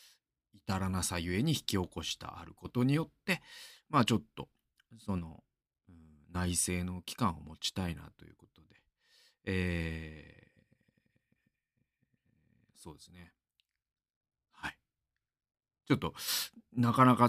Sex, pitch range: male, 85-120 Hz